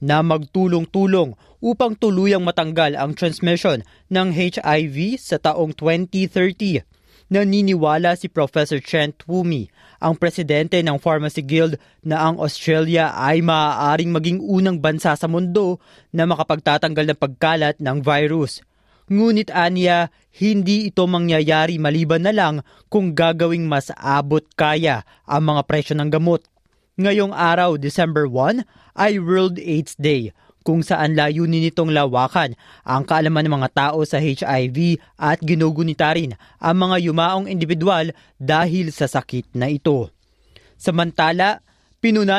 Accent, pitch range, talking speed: native, 155-180 Hz, 125 wpm